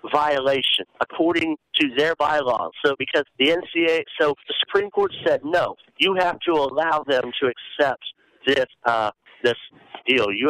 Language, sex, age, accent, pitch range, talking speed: English, male, 50-69, American, 125-160 Hz, 155 wpm